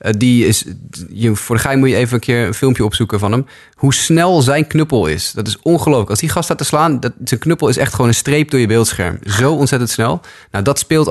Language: Dutch